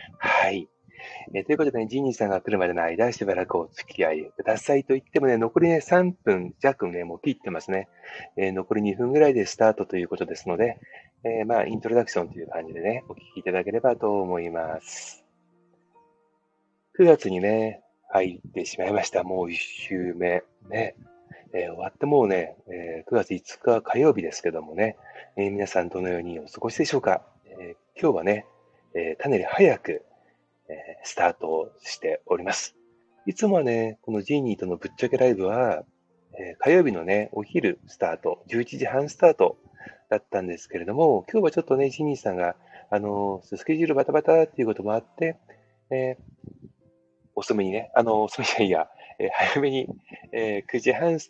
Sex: male